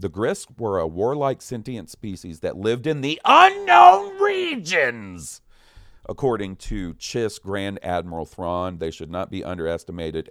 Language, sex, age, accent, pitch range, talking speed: English, male, 40-59, American, 80-110 Hz, 140 wpm